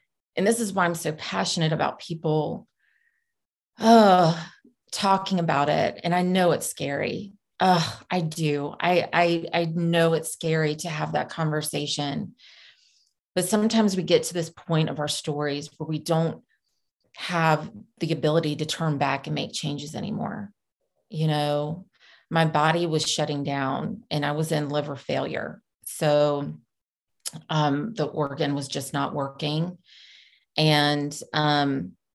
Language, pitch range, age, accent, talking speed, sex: English, 150-175 Hz, 30-49, American, 145 wpm, female